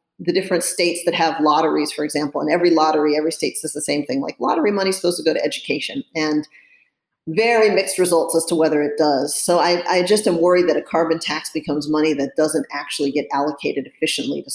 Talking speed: 225 wpm